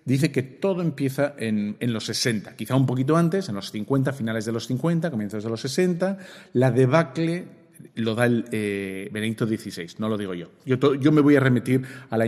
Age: 50-69